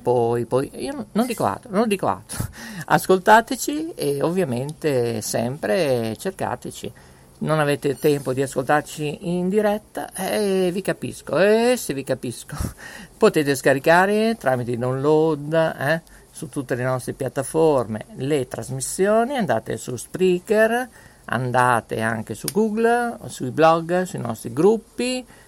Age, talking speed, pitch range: 50-69, 125 wpm, 125-185 Hz